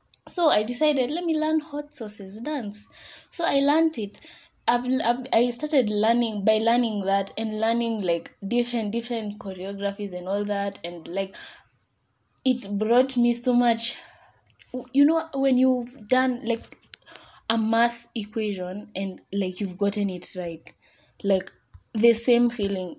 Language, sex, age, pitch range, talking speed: English, female, 20-39, 185-240 Hz, 145 wpm